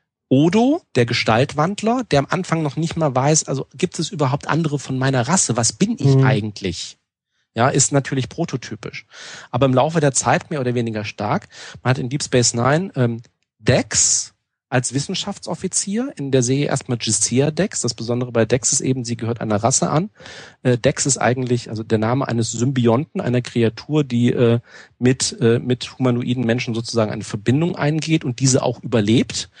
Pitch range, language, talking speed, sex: 120-150 Hz, German, 170 wpm, male